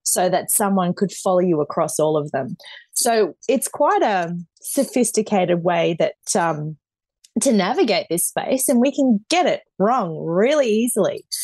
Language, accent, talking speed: English, Australian, 155 wpm